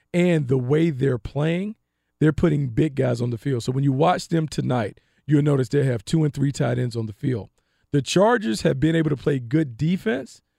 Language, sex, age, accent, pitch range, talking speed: English, male, 40-59, American, 120-160 Hz, 220 wpm